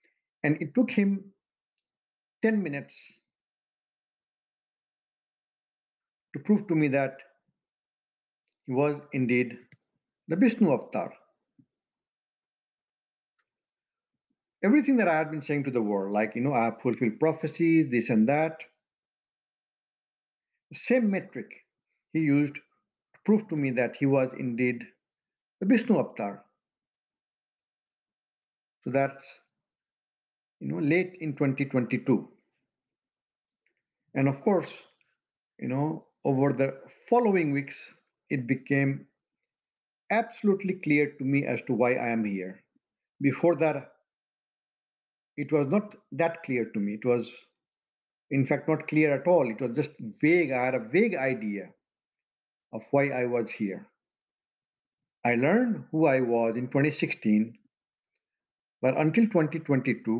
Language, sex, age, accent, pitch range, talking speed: English, male, 50-69, Indian, 125-165 Hz, 120 wpm